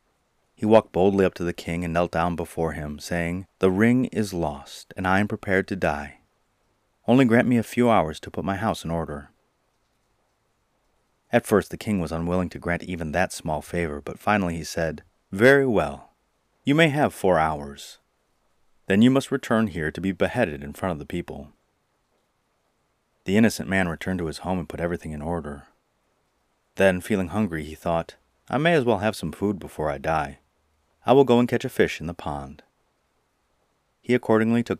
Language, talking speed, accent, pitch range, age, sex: English, 190 wpm, American, 80-110 Hz, 30-49, male